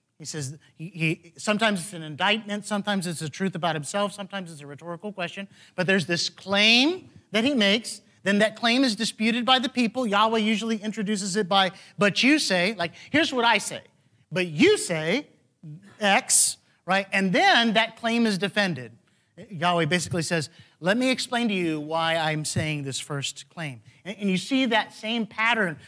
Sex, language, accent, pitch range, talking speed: male, English, American, 165-220 Hz, 180 wpm